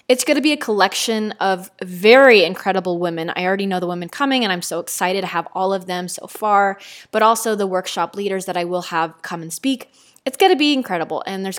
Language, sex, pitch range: English, female, 185-225 Hz